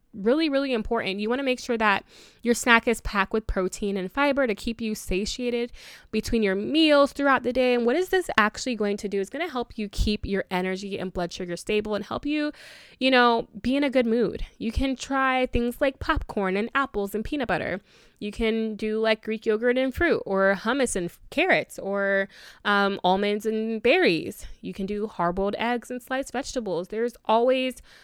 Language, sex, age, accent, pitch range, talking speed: English, female, 20-39, American, 195-250 Hz, 205 wpm